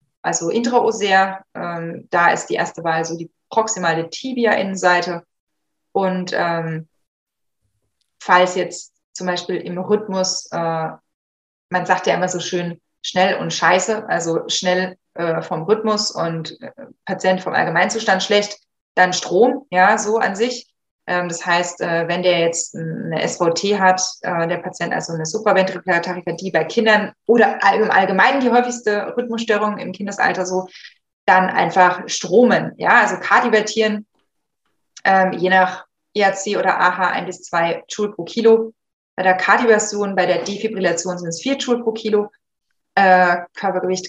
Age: 20-39